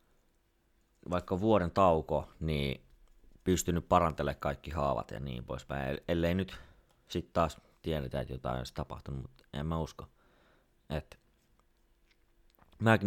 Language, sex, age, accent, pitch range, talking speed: Finnish, male, 30-49, native, 70-85 Hz, 120 wpm